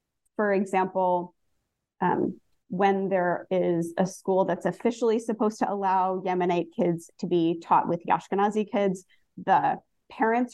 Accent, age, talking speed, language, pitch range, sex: American, 20-39, 130 wpm, English, 175-215 Hz, female